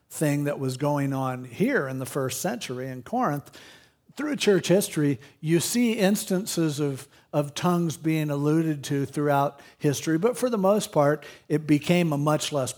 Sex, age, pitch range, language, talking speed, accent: male, 50-69, 135-160 Hz, English, 170 wpm, American